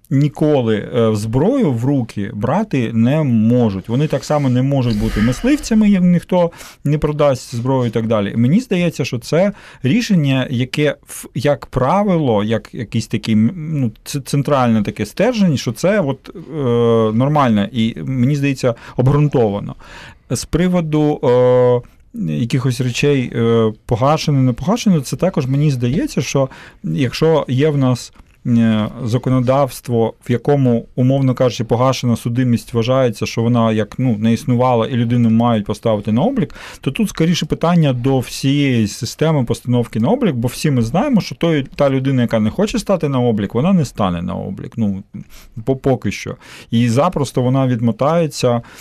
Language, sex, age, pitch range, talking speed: Ukrainian, male, 40-59, 115-150 Hz, 140 wpm